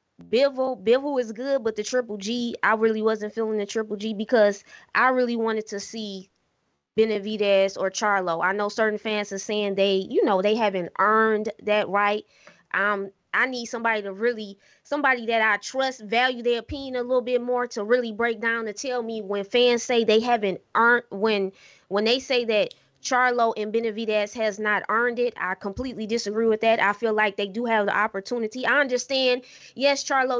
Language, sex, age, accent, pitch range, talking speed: English, female, 20-39, American, 205-240 Hz, 190 wpm